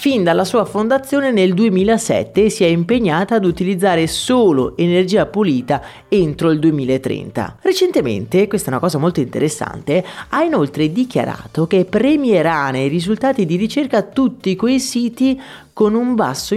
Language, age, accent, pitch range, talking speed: Italian, 30-49, native, 140-205 Hz, 140 wpm